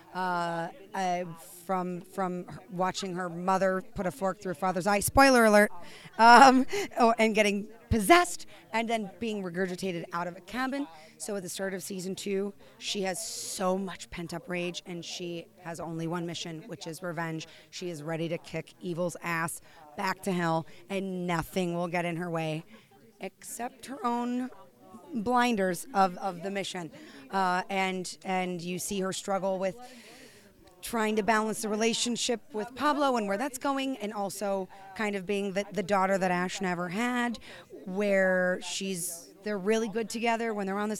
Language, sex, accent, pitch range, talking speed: English, female, American, 180-225 Hz, 170 wpm